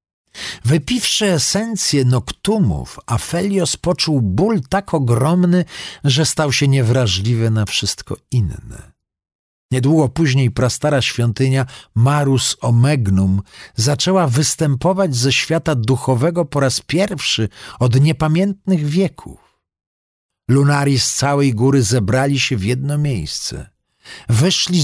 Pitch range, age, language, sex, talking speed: 115-160 Hz, 50-69, Polish, male, 100 wpm